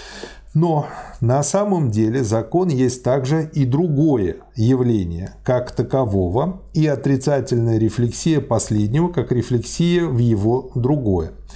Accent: native